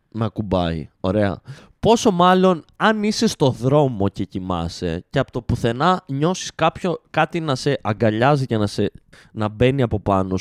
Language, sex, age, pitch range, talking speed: Greek, male, 20-39, 115-175 Hz, 160 wpm